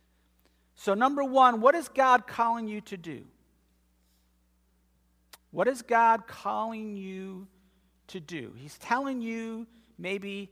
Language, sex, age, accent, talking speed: English, male, 50-69, American, 120 wpm